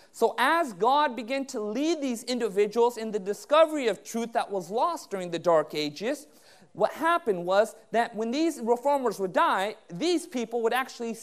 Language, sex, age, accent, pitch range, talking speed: English, male, 30-49, American, 210-280 Hz, 175 wpm